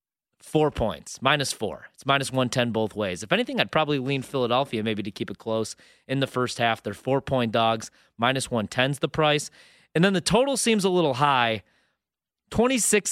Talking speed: 200 wpm